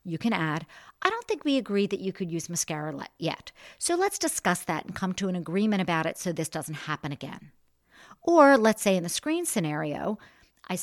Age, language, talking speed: 50-69, English, 210 wpm